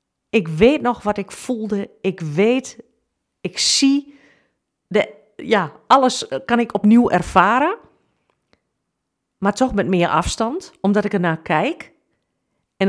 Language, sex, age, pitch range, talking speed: Dutch, female, 40-59, 175-240 Hz, 125 wpm